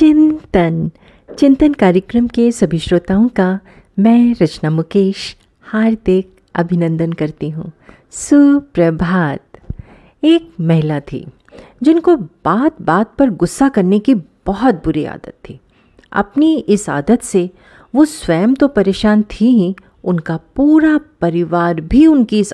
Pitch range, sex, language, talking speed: 170-255 Hz, female, Hindi, 120 wpm